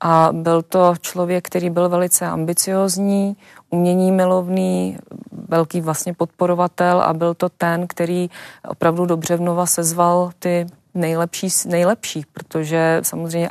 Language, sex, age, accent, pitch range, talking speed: Czech, female, 30-49, native, 155-170 Hz, 120 wpm